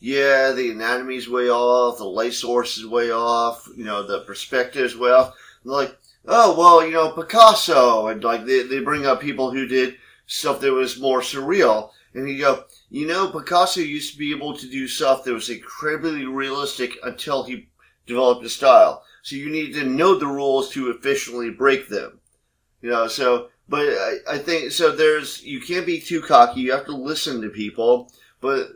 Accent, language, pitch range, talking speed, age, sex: American, English, 115-140 Hz, 190 wpm, 30-49, male